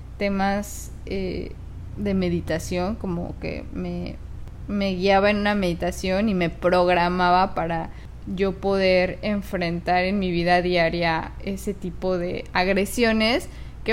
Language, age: Spanish, 10-29